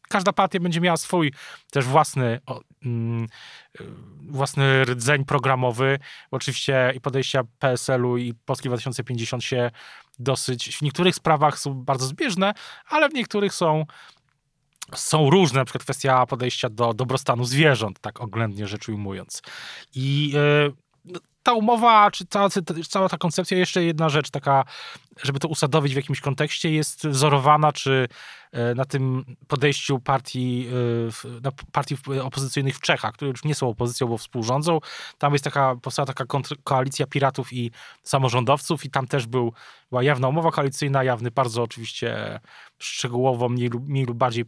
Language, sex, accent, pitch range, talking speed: Polish, male, native, 125-150 Hz, 145 wpm